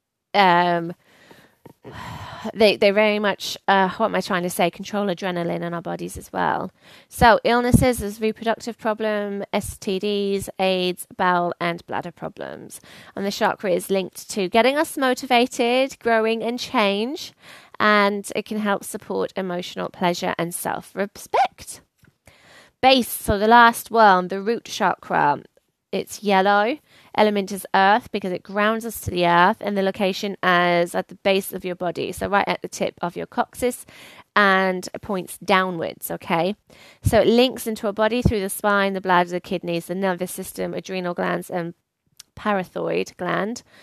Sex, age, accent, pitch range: female, 20-39, British, 180-220 Hz